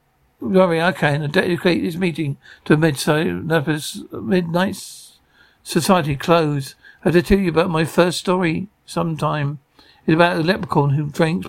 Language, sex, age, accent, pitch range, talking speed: English, male, 60-79, British, 155-190 Hz, 145 wpm